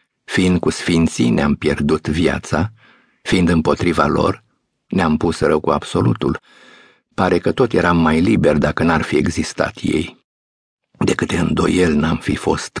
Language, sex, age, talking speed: Romanian, male, 50-69, 150 wpm